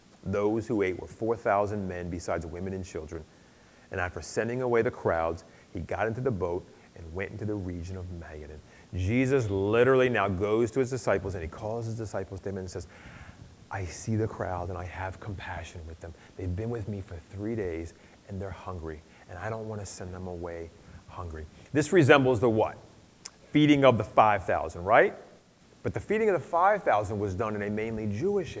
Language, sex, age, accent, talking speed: English, male, 30-49, American, 195 wpm